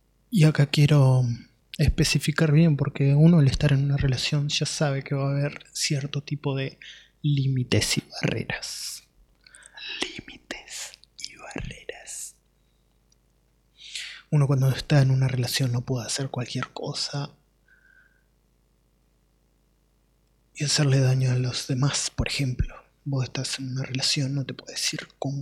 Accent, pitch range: Argentinian, 130-150 Hz